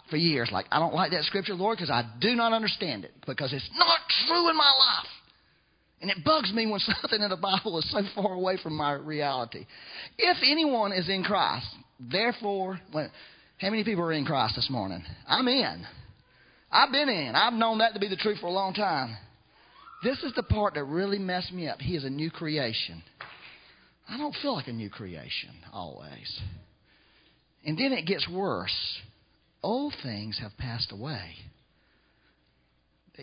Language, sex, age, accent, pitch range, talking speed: English, male, 40-59, American, 130-220 Hz, 180 wpm